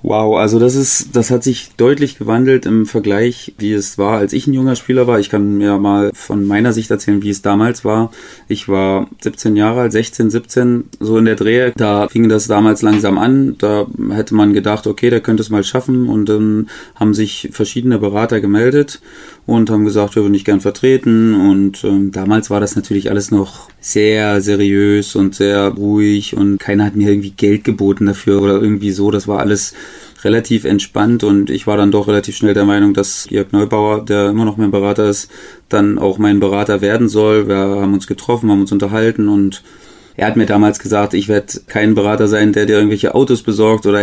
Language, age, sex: German, 30-49, male